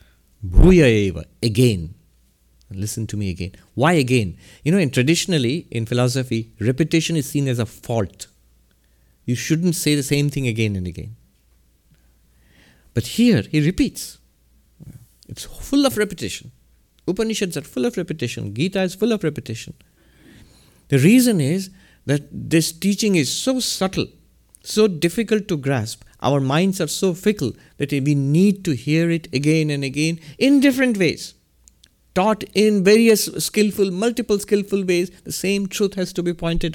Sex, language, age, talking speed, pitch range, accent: male, English, 60-79, 150 wpm, 115-180 Hz, Indian